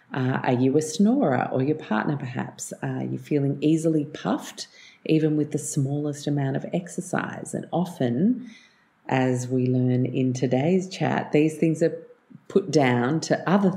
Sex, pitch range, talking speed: female, 125-155 Hz, 155 wpm